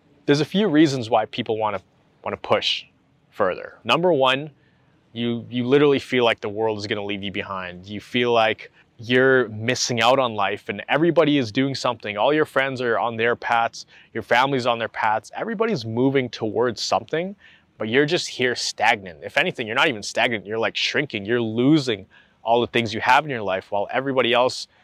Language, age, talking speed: English, 20-39, 200 wpm